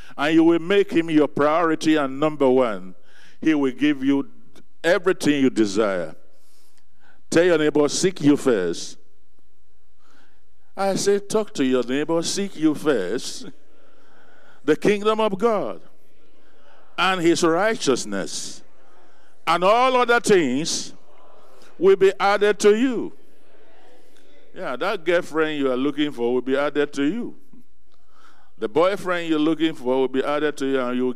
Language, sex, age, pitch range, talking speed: English, male, 50-69, 125-165 Hz, 140 wpm